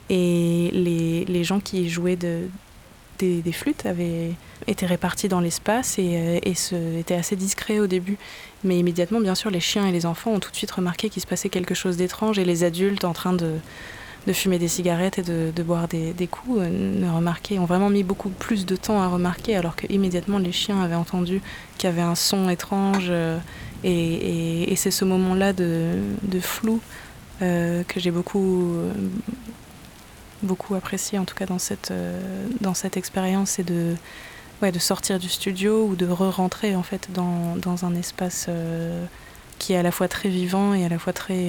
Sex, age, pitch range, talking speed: female, 20-39, 175-195 Hz, 195 wpm